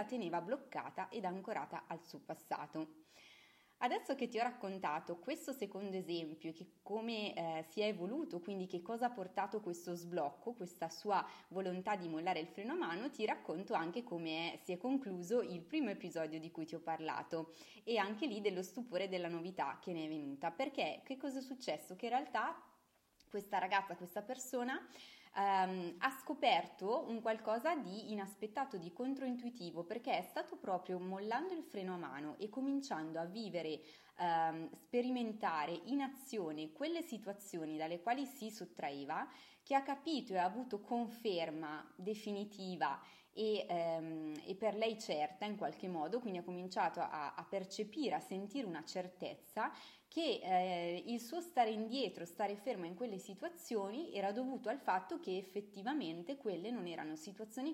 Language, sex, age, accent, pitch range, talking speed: Italian, female, 20-39, native, 170-240 Hz, 160 wpm